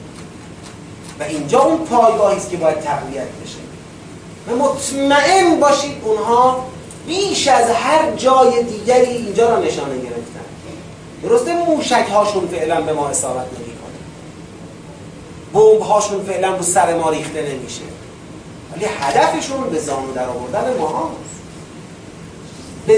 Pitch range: 165-255 Hz